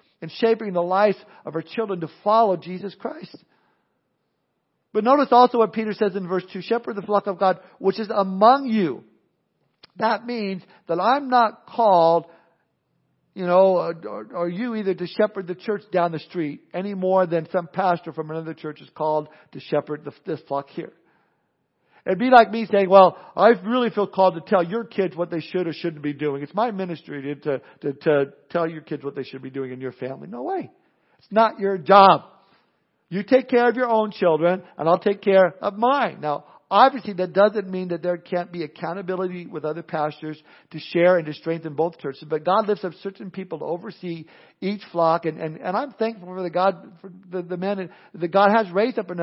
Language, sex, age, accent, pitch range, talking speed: English, male, 50-69, American, 165-215 Hz, 205 wpm